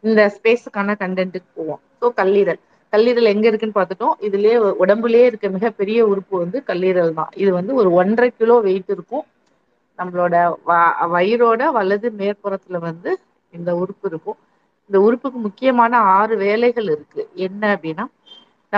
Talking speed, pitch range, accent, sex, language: 130 wpm, 185-235 Hz, native, female, Tamil